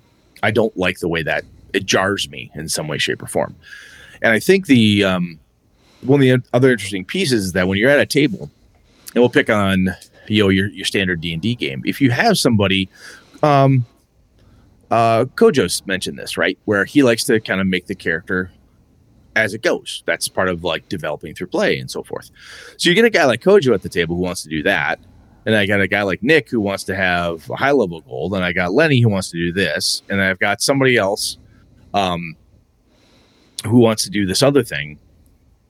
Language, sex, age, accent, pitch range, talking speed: English, male, 30-49, American, 95-125 Hz, 215 wpm